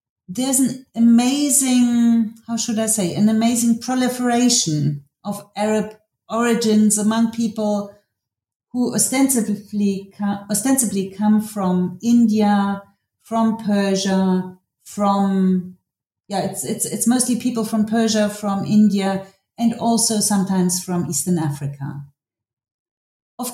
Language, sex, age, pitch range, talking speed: English, female, 40-59, 175-230 Hz, 105 wpm